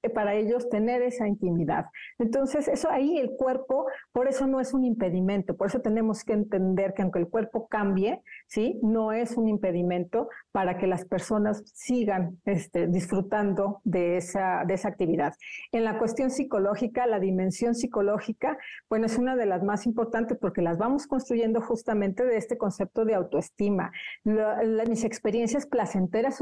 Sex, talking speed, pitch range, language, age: female, 165 wpm, 195-245 Hz, Spanish, 40-59